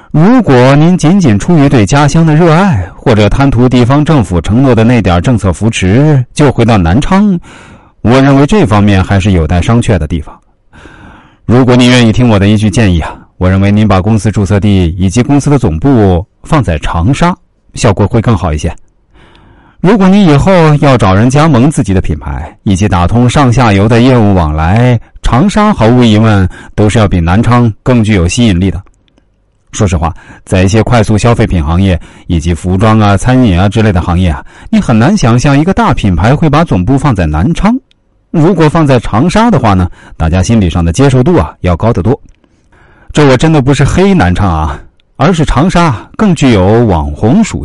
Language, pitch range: Chinese, 95-140 Hz